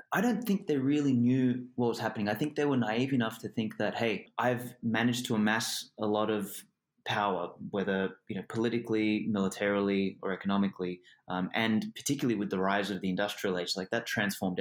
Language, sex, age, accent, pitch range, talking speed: English, male, 20-39, Australian, 100-125 Hz, 195 wpm